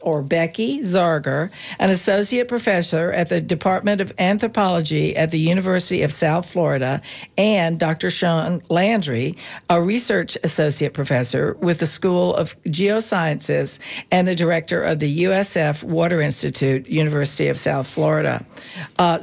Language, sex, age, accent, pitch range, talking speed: English, female, 50-69, American, 155-200 Hz, 135 wpm